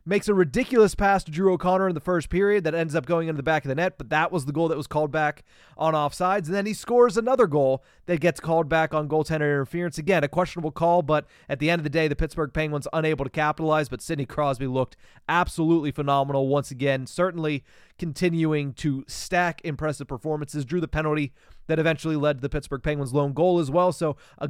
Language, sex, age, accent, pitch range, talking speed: English, male, 30-49, American, 145-175 Hz, 225 wpm